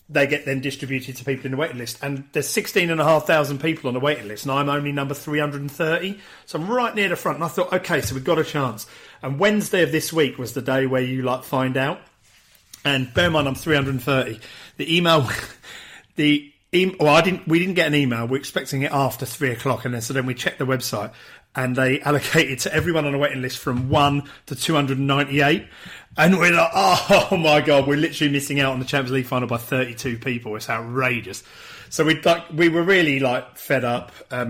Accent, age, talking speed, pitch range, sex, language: British, 40-59, 225 wpm, 130-160 Hz, male, English